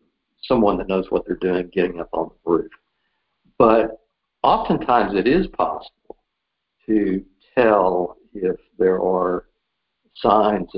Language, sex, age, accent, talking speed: English, male, 60-79, American, 120 wpm